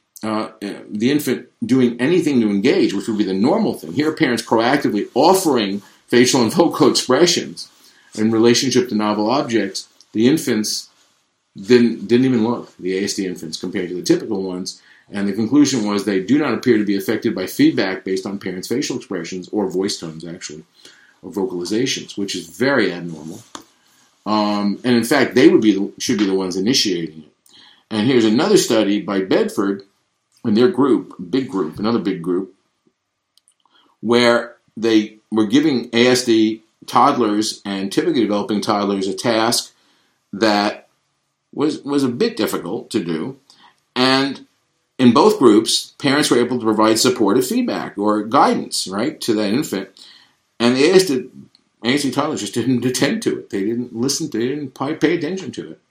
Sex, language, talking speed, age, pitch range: male, English, 165 wpm, 50-69, 100-120 Hz